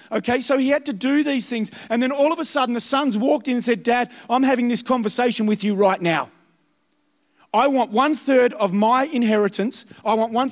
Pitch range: 210-270 Hz